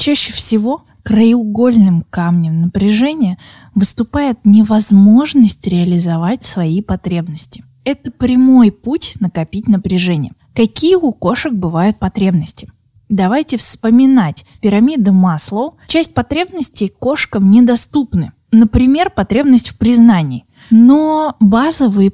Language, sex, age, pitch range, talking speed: Russian, female, 20-39, 185-245 Hz, 90 wpm